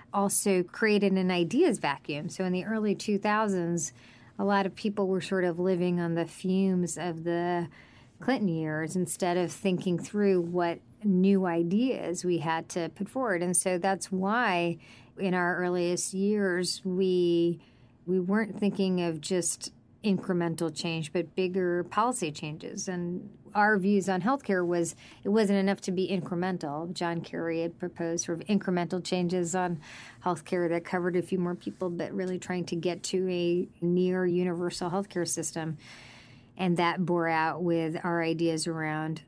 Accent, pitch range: American, 170-190 Hz